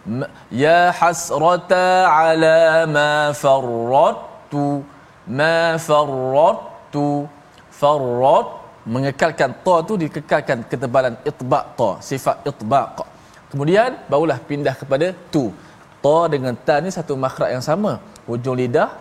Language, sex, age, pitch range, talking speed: Malayalam, male, 20-39, 125-165 Hz, 100 wpm